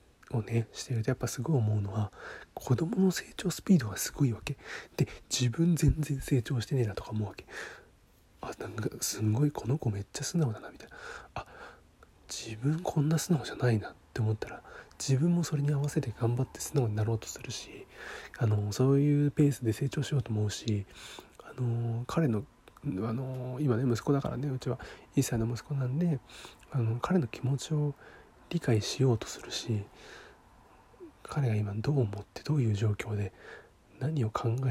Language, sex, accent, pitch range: Japanese, male, native, 110-145 Hz